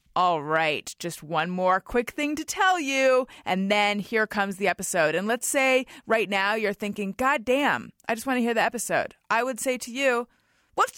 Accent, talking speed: American, 210 wpm